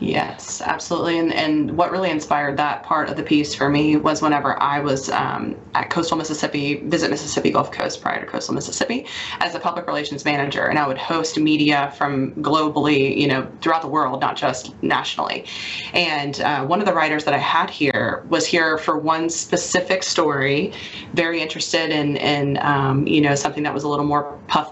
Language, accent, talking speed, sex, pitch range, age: English, American, 195 wpm, female, 145-165 Hz, 20-39